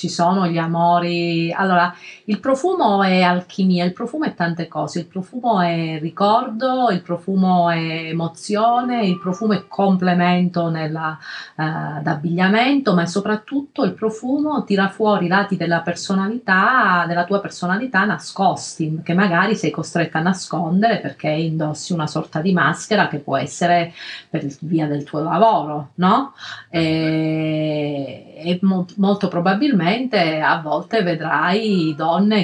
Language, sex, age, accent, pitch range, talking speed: Italian, female, 30-49, native, 165-205 Hz, 135 wpm